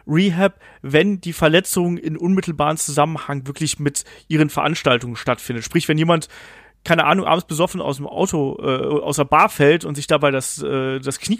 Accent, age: German, 30-49